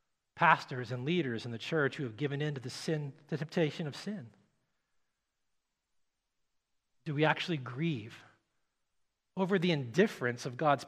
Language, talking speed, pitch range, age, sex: English, 145 wpm, 140-190 Hz, 40-59, male